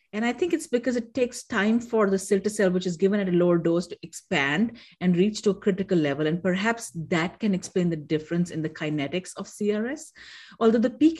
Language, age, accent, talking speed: English, 50-69, Indian, 225 wpm